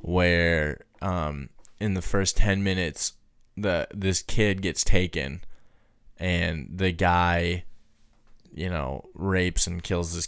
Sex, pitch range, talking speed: male, 90-105 Hz, 125 wpm